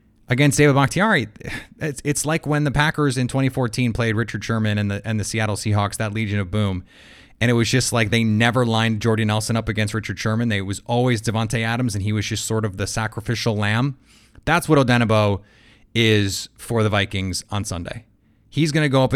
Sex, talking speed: male, 210 wpm